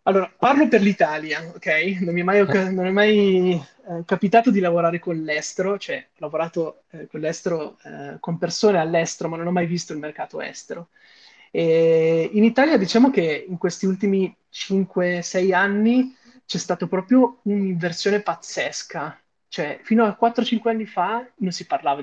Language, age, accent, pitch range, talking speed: Italian, 20-39, native, 165-210 Hz, 165 wpm